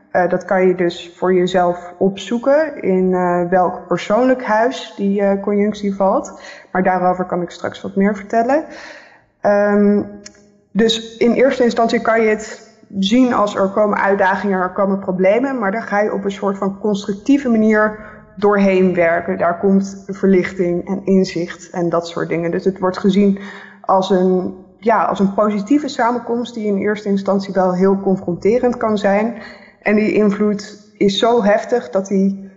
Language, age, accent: Dutch, 20-39, Dutch